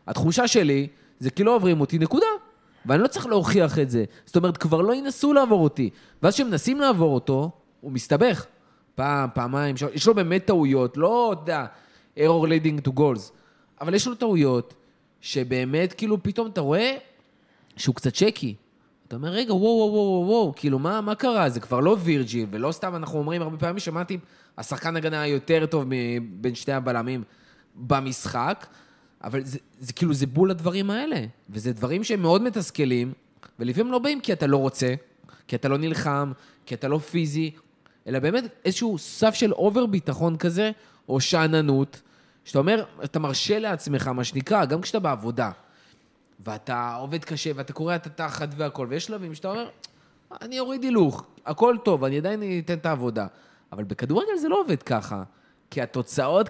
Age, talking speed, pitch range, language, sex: 20-39, 175 wpm, 135-195 Hz, Hebrew, male